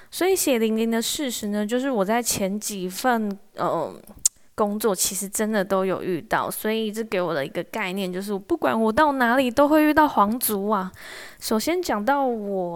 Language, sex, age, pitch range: Chinese, female, 20-39, 195-255 Hz